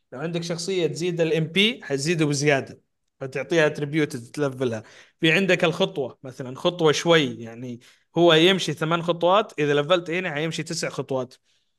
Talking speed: 145 wpm